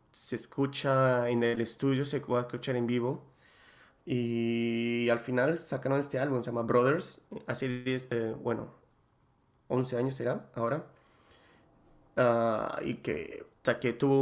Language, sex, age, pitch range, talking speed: Spanish, male, 20-39, 115-135 Hz, 130 wpm